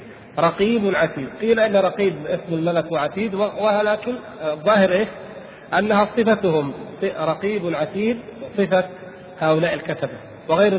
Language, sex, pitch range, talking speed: Arabic, male, 155-195 Hz, 110 wpm